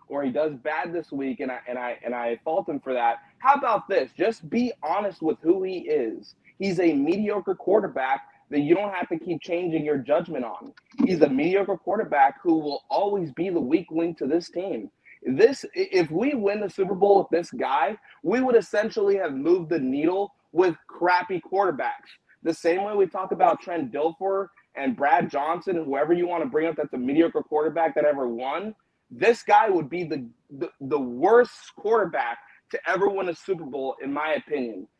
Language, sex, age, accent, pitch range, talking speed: English, male, 30-49, American, 160-240 Hz, 200 wpm